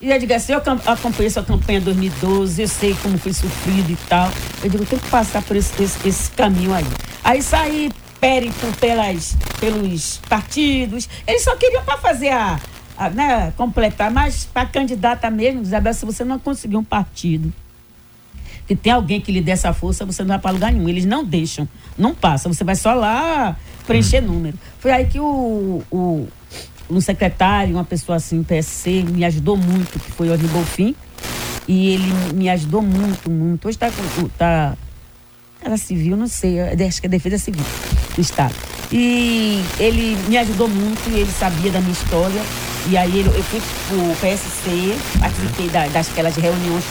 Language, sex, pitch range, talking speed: Portuguese, female, 180-235 Hz, 185 wpm